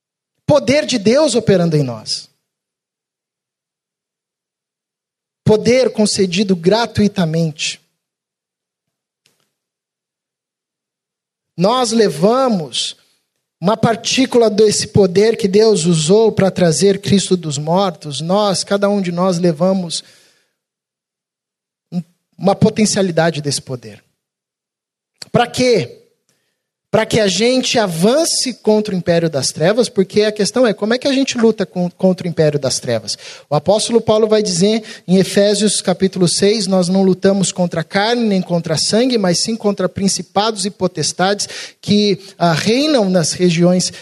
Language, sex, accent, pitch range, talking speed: Portuguese, male, Brazilian, 175-220 Hz, 120 wpm